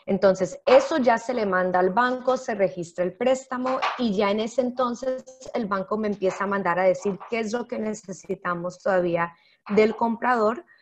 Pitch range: 205-265 Hz